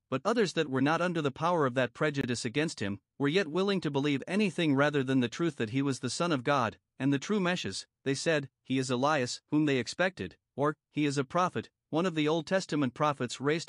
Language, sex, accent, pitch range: English, male, American, 135-175 Hz